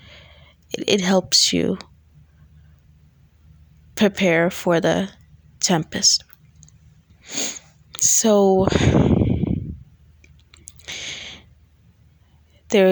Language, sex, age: English, female, 20-39